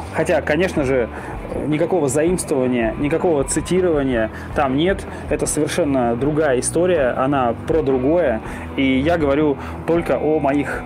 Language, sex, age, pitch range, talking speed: Russian, male, 20-39, 130-160 Hz, 120 wpm